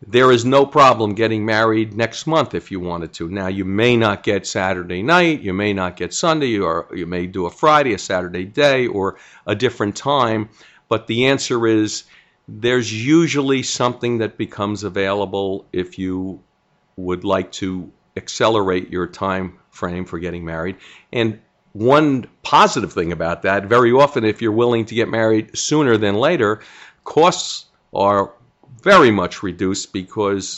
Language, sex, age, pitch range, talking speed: English, male, 50-69, 95-115 Hz, 160 wpm